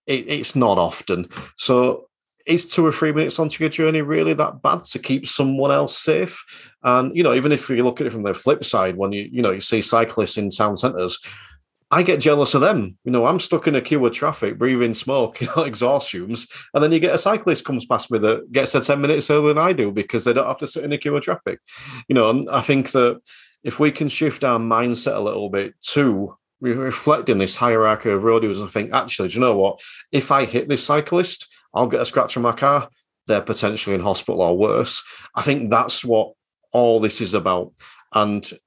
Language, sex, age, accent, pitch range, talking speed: English, male, 30-49, British, 110-145 Hz, 225 wpm